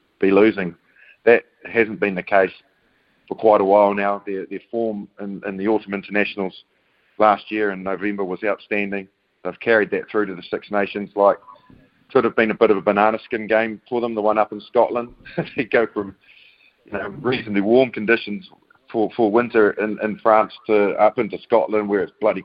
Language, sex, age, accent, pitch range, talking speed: English, male, 30-49, Australian, 100-110 Hz, 195 wpm